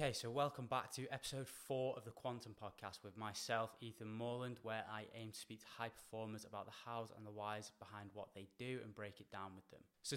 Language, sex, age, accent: English, male, 10-29, British